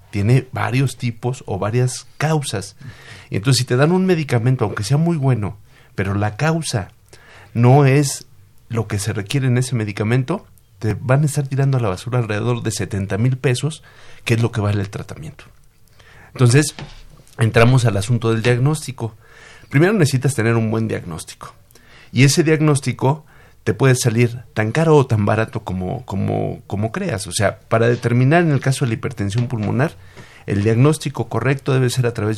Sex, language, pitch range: male, Spanish, 110-140 Hz